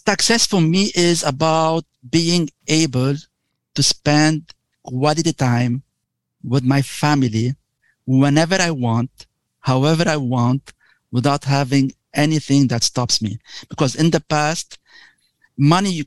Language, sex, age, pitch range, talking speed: English, male, 50-69, 130-165 Hz, 115 wpm